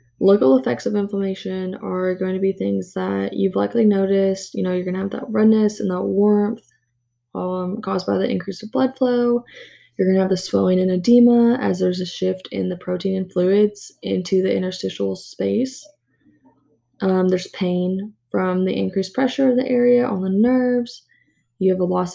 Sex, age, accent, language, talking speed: female, 20-39, American, English, 190 wpm